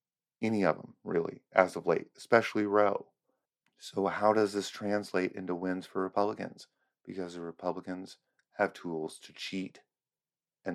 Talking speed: 145 wpm